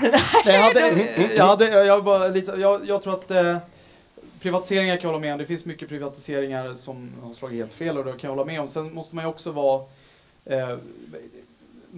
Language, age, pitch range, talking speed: Swedish, 30-49, 135-180 Hz, 200 wpm